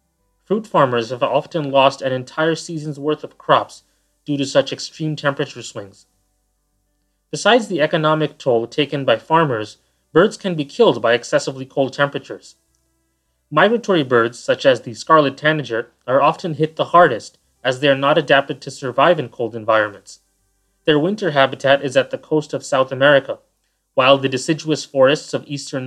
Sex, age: male, 30-49